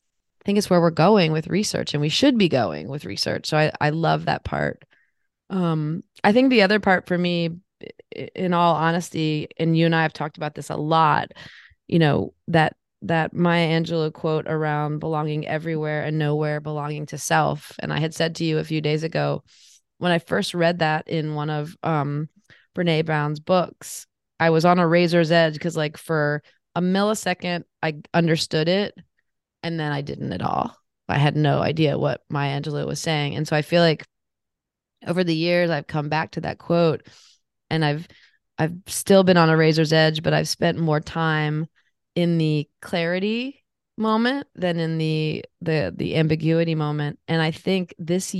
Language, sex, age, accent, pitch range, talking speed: English, female, 20-39, American, 150-175 Hz, 185 wpm